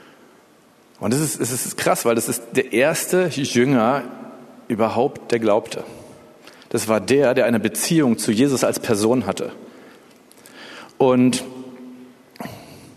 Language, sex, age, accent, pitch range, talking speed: German, male, 40-59, German, 125-170 Hz, 125 wpm